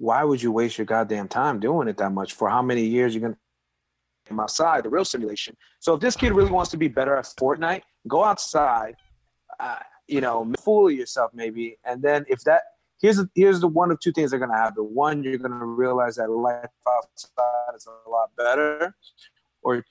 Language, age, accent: English, 30-49, American